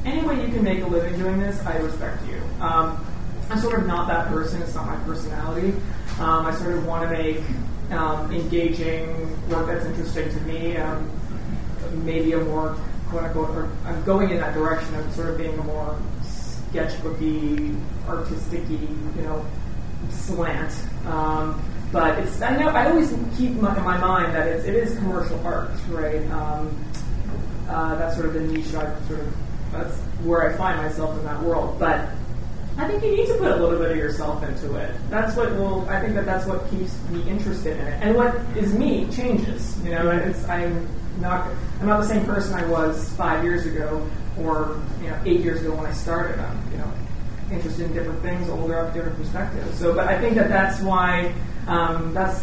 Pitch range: 155-185 Hz